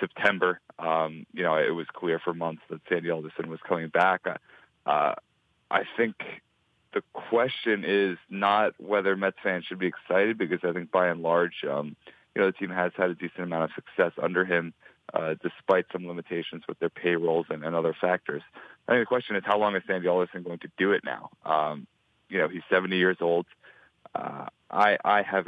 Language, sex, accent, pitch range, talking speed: English, male, American, 85-100 Hz, 200 wpm